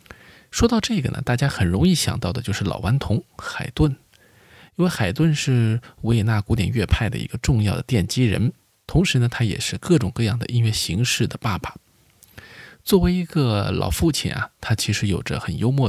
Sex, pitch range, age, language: male, 105-140 Hz, 20-39, Chinese